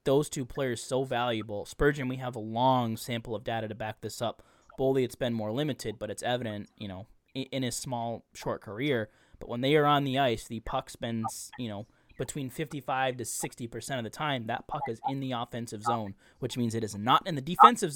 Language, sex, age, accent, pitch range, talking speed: English, male, 20-39, American, 120-145 Hz, 225 wpm